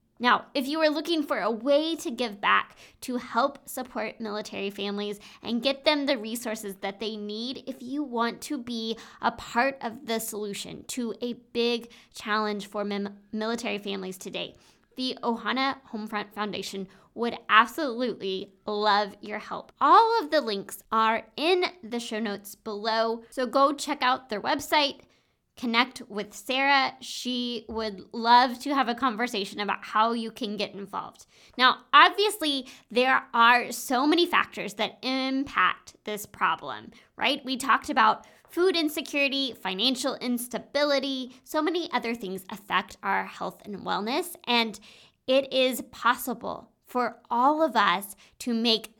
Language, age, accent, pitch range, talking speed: English, 20-39, American, 210-270 Hz, 150 wpm